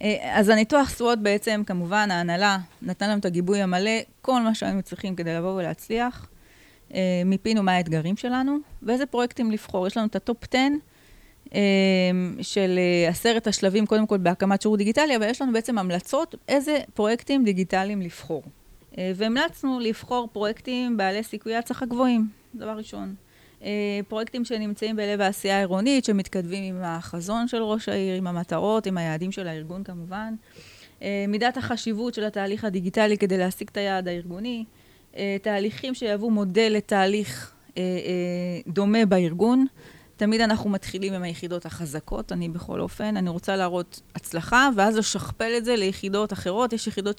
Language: Hebrew